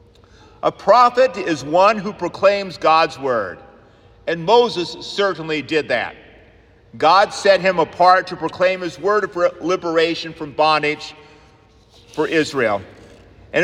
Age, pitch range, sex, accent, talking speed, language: 50-69, 140-190 Hz, male, American, 125 wpm, English